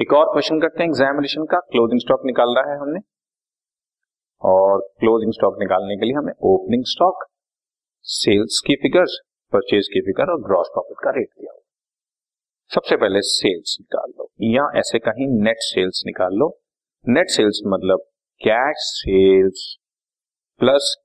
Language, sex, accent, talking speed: Hindi, male, native, 150 wpm